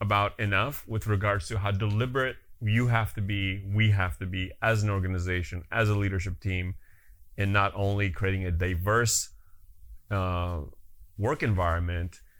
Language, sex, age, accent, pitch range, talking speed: English, male, 30-49, American, 90-110 Hz, 150 wpm